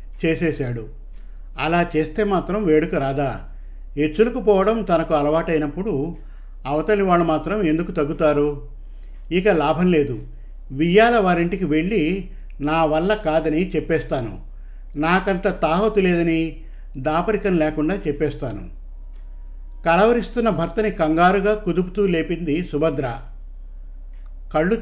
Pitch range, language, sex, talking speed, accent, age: 120-185 Hz, Telugu, male, 90 wpm, native, 50-69